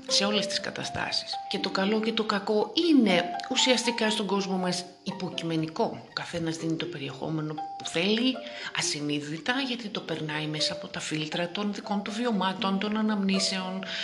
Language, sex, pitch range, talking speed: Greek, female, 165-230 Hz, 155 wpm